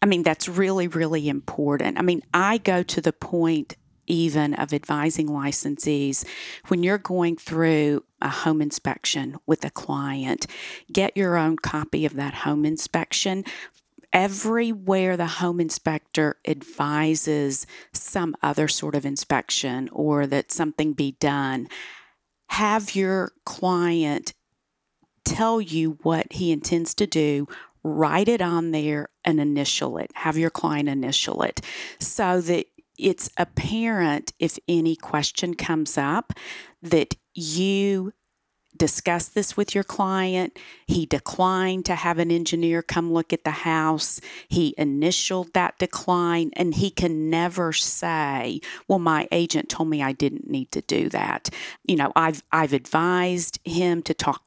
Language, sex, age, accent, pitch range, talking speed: English, female, 40-59, American, 150-180 Hz, 140 wpm